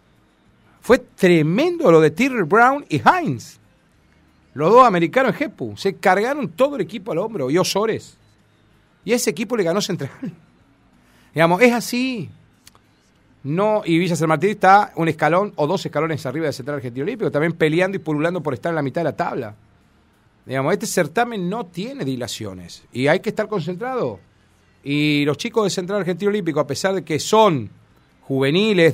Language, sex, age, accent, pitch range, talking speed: Spanish, male, 40-59, Argentinian, 135-195 Hz, 170 wpm